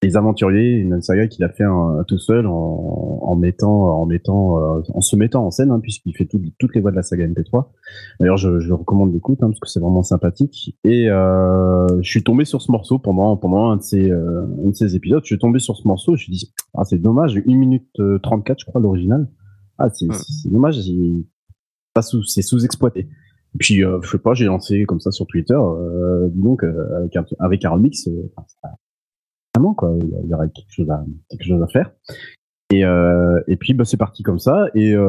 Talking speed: 210 wpm